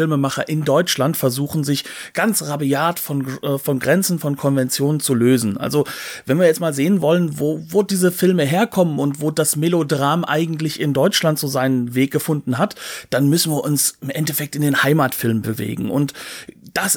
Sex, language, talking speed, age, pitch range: male, German, 175 wpm, 40-59, 135-170 Hz